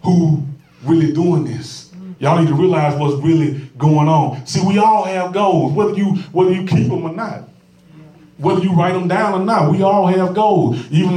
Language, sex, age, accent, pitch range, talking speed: English, male, 30-49, American, 140-185 Hz, 200 wpm